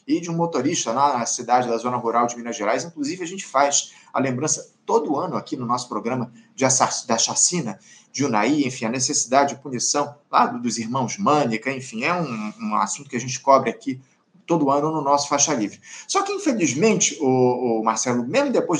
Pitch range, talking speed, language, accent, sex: 145-210 Hz, 200 wpm, Portuguese, Brazilian, male